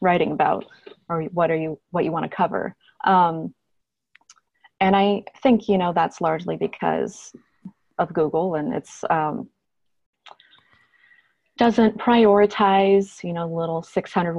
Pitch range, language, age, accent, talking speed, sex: 175-215 Hz, English, 30-49, American, 130 wpm, female